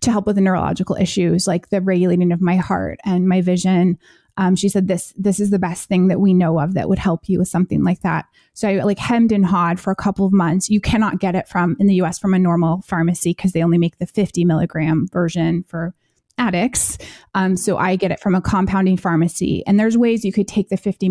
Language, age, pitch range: English, 20-39, 175-200 Hz